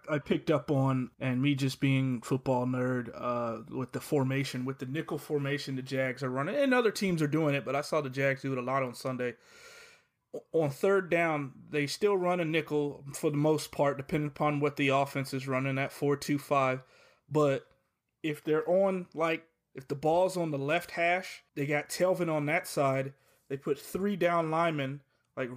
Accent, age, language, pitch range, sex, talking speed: American, 30-49, English, 135-165 Hz, male, 195 wpm